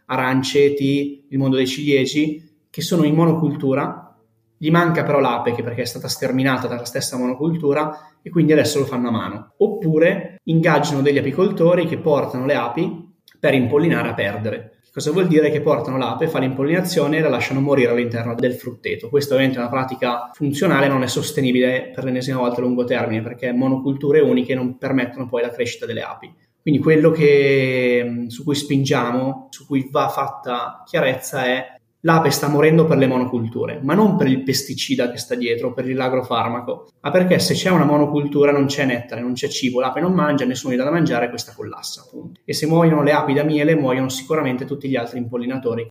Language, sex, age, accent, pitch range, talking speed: Italian, male, 20-39, native, 125-150 Hz, 185 wpm